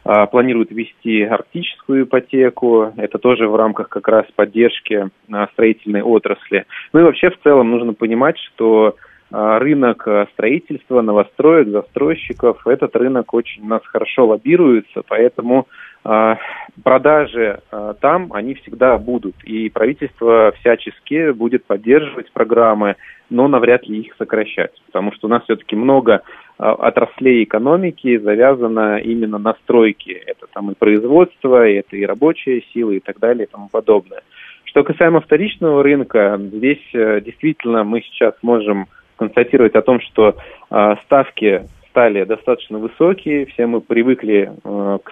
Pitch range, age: 110-140 Hz, 30-49